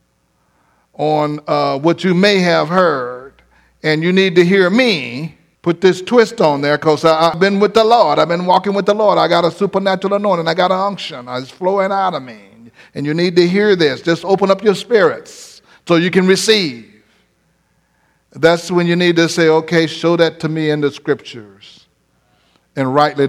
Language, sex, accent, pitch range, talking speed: English, male, American, 145-195 Hz, 195 wpm